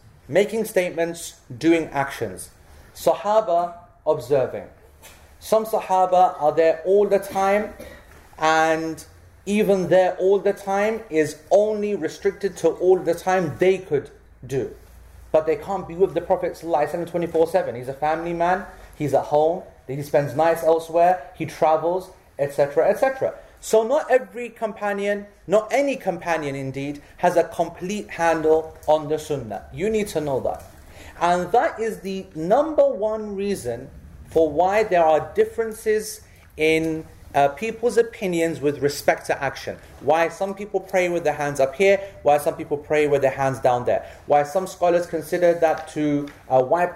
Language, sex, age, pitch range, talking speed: English, male, 30-49, 150-195 Hz, 150 wpm